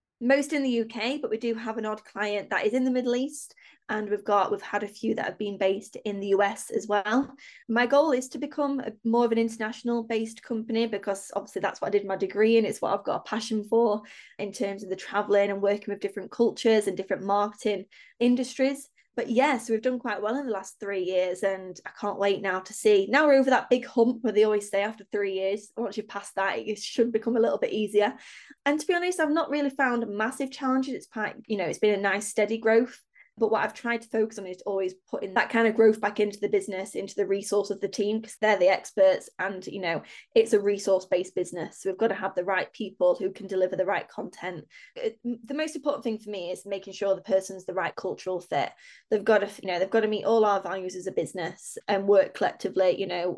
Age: 20-39